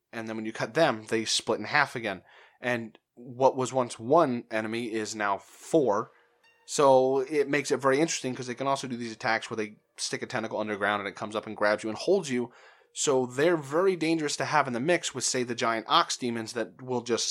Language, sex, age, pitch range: English, male, 20-39, 110-135 Hz